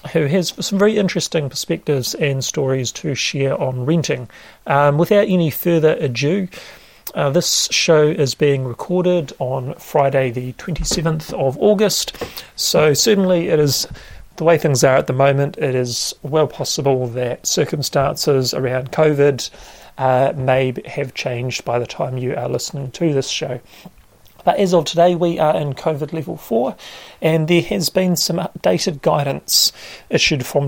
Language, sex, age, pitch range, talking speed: English, male, 40-59, 135-170 Hz, 155 wpm